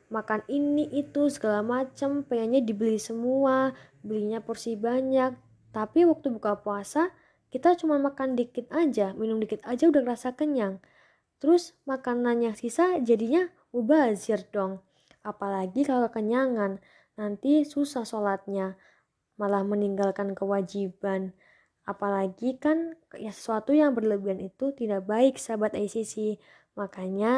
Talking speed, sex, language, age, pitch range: 120 wpm, female, Indonesian, 20-39, 200-255 Hz